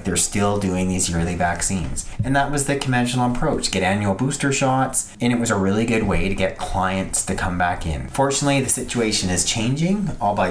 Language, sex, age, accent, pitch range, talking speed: English, male, 30-49, American, 95-125 Hz, 205 wpm